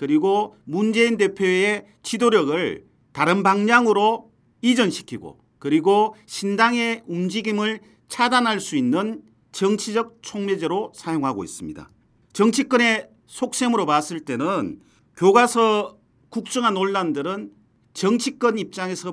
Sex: male